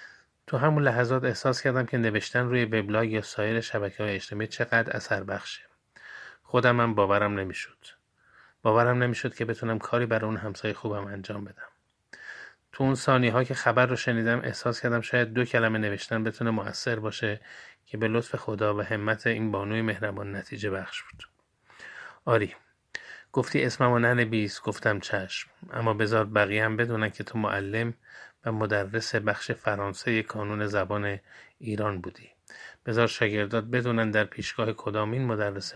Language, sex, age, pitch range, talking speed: Persian, male, 30-49, 105-115 Hz, 150 wpm